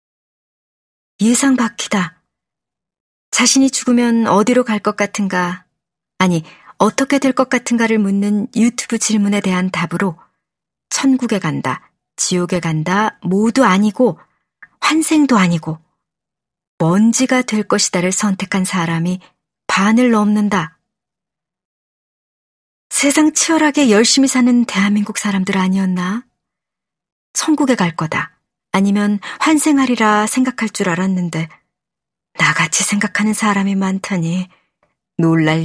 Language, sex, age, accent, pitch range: Korean, male, 40-59, native, 180-225 Hz